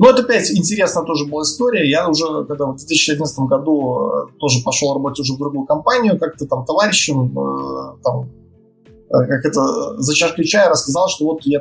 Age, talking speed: 20-39, 175 wpm